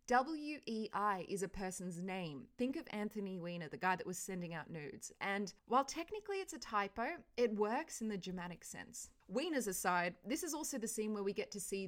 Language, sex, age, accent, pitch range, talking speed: English, female, 20-39, Australian, 180-235 Hz, 200 wpm